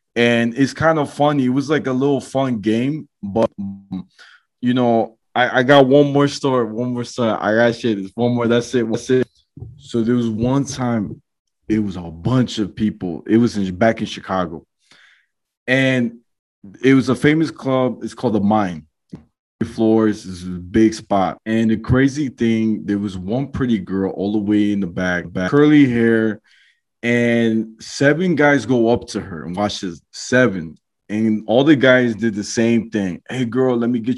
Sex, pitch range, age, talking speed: male, 110-135 Hz, 20-39, 190 wpm